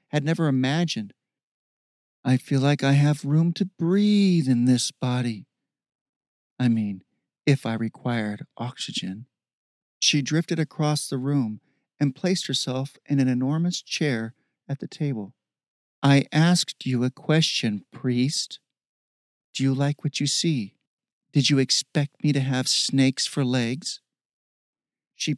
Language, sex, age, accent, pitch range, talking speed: English, male, 40-59, American, 125-160 Hz, 135 wpm